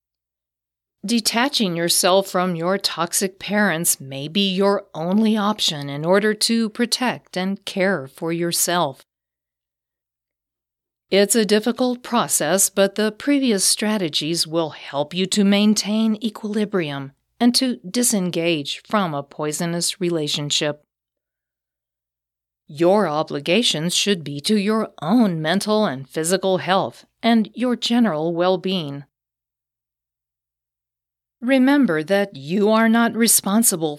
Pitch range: 145-210 Hz